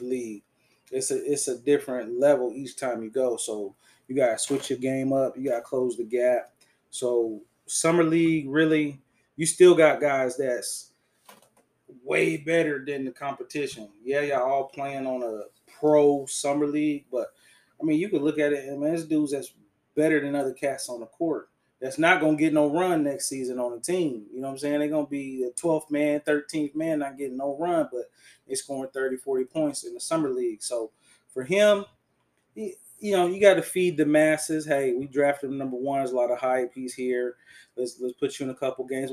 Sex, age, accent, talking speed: male, 20-39, American, 210 wpm